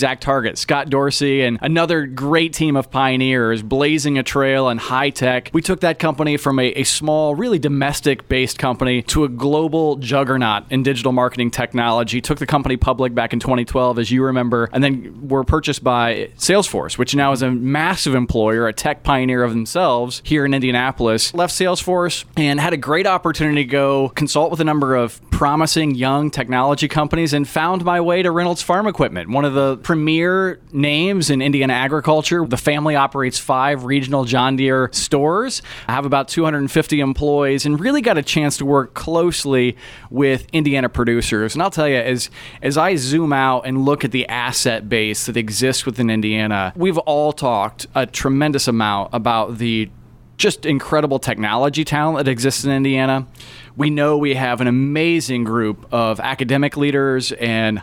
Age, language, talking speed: 20-39, English, 180 wpm